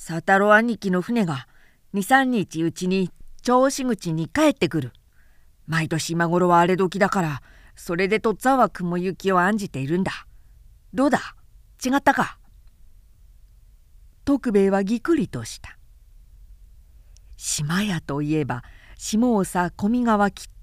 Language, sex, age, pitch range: Japanese, female, 50-69, 150-215 Hz